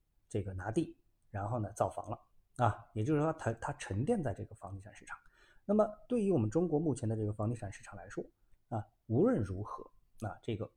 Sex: male